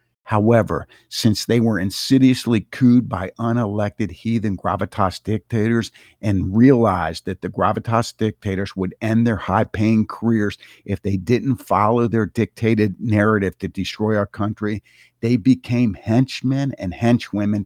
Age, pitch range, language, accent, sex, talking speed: 50-69, 100-120 Hz, English, American, male, 135 wpm